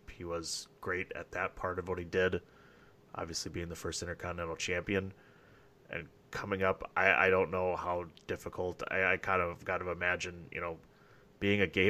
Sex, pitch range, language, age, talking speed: male, 85-105 Hz, English, 30-49, 185 wpm